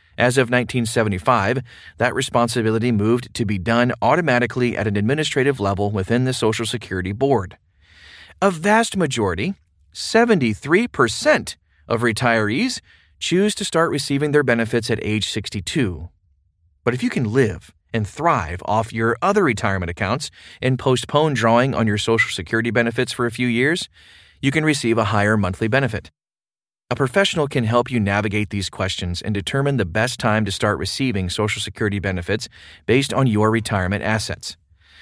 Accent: American